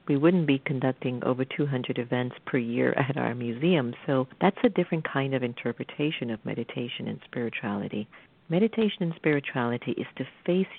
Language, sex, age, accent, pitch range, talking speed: English, female, 50-69, American, 125-160 Hz, 160 wpm